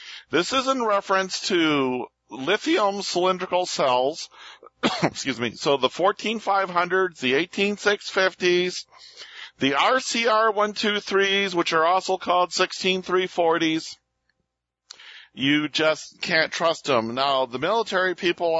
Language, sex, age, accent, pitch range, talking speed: English, male, 50-69, American, 135-180 Hz, 105 wpm